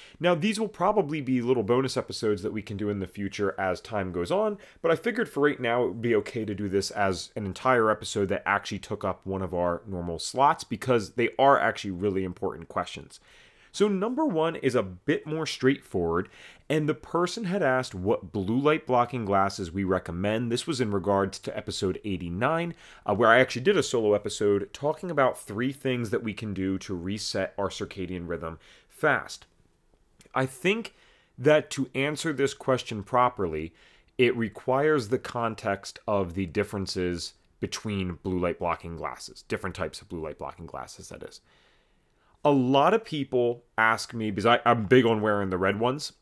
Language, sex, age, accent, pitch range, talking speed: English, male, 30-49, American, 95-130 Hz, 185 wpm